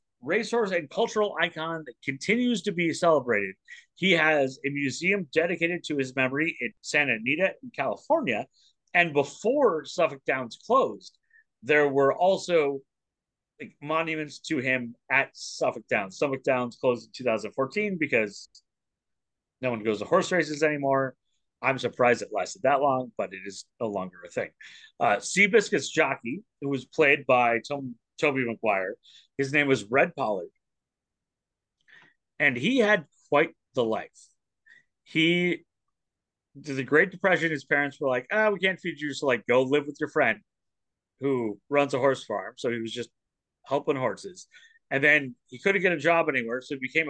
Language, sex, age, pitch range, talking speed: English, male, 30-49, 130-175 Hz, 165 wpm